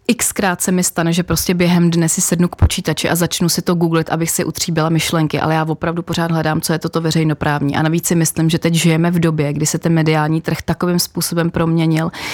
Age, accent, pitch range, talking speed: 30-49, native, 160-180 Hz, 230 wpm